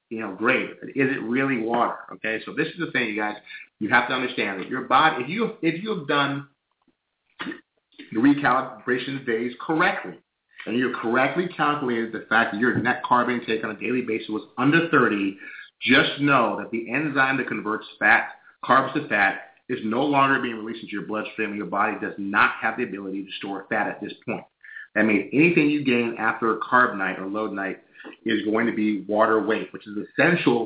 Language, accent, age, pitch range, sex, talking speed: English, American, 30-49, 110-135 Hz, male, 205 wpm